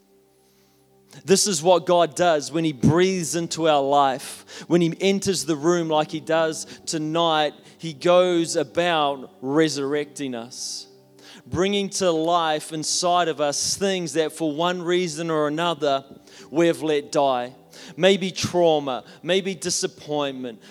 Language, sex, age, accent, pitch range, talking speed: English, male, 30-49, Australian, 160-190 Hz, 135 wpm